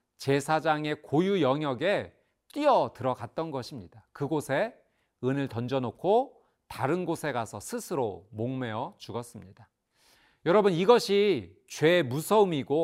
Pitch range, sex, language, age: 125-195 Hz, male, Korean, 40-59